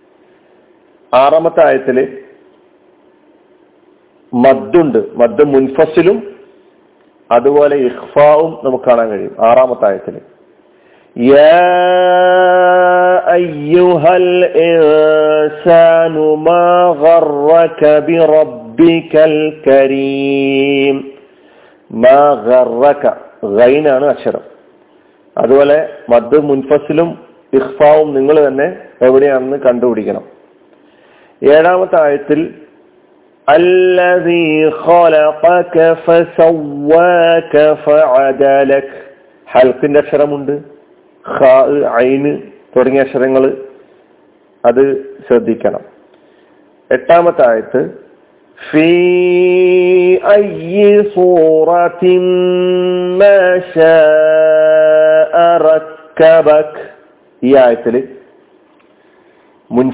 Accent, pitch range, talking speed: native, 145-180 Hz, 55 wpm